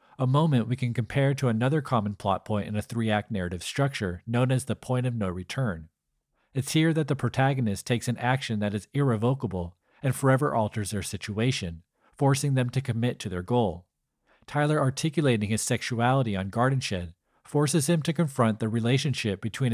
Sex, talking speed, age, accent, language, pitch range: male, 180 wpm, 40-59, American, English, 105-135 Hz